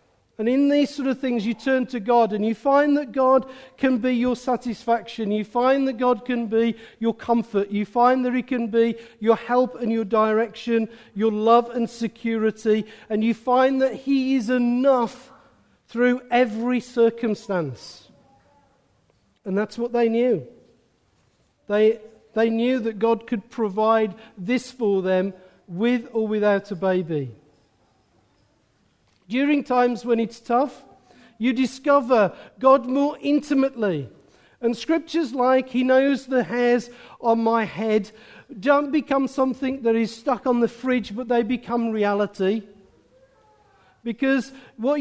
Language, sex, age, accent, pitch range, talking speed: English, male, 50-69, British, 225-260 Hz, 145 wpm